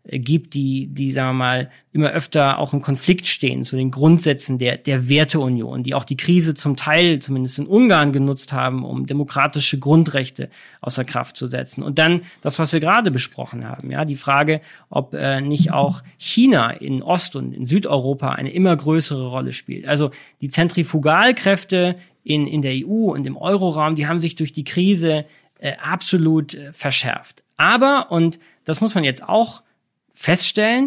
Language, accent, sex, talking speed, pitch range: German, German, male, 175 wpm, 140-180 Hz